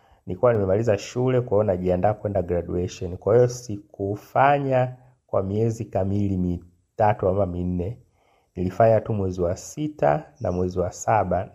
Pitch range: 90-115 Hz